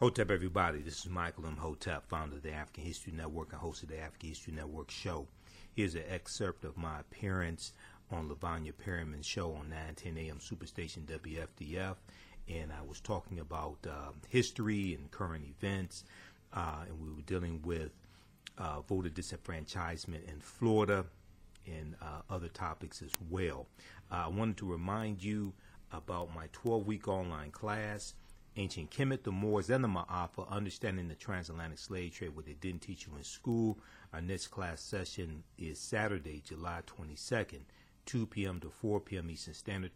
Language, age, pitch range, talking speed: English, 40-59, 80-100 Hz, 165 wpm